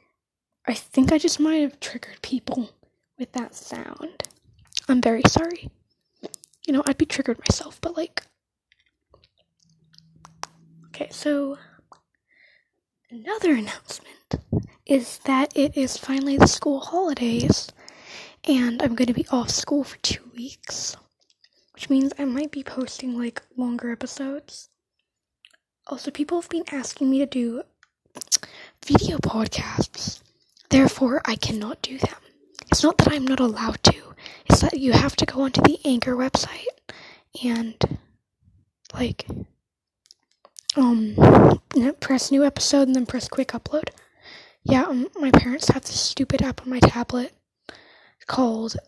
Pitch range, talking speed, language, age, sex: 245-285 Hz, 135 wpm, English, 10-29, female